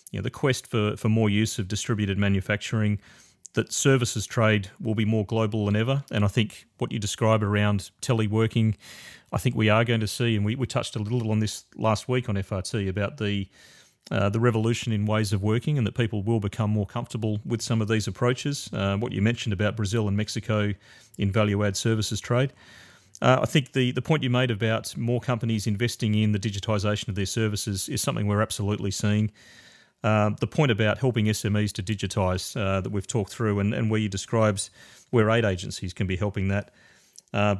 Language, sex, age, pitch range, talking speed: English, male, 30-49, 100-115 Hz, 205 wpm